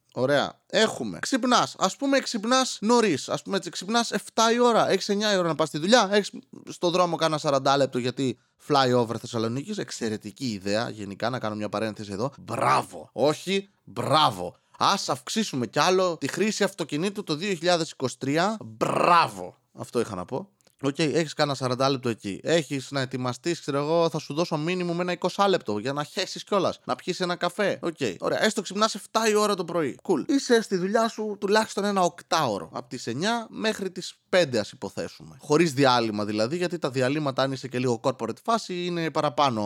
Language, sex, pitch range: Greek, male, 125-195 Hz